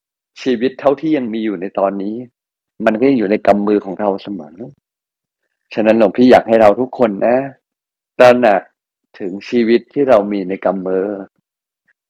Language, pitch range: Thai, 105-125 Hz